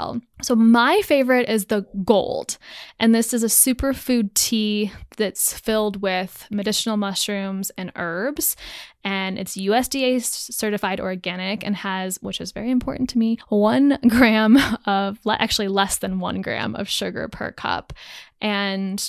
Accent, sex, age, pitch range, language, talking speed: American, female, 10-29, 190-230 Hz, English, 140 wpm